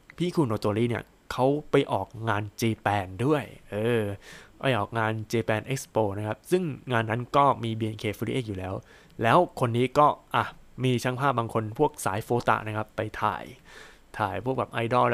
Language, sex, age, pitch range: Thai, male, 20-39, 110-135 Hz